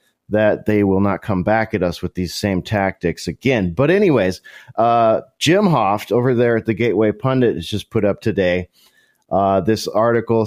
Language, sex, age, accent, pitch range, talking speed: English, male, 30-49, American, 105-140 Hz, 185 wpm